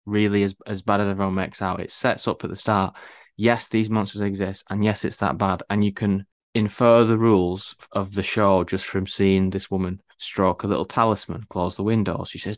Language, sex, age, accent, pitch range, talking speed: English, male, 20-39, British, 95-105 Hz, 220 wpm